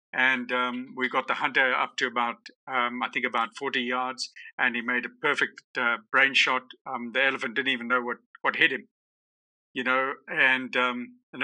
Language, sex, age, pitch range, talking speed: English, male, 50-69, 120-135 Hz, 200 wpm